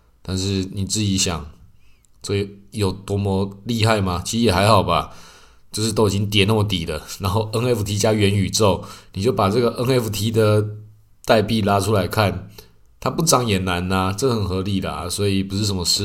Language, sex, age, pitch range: Chinese, male, 20-39, 90-105 Hz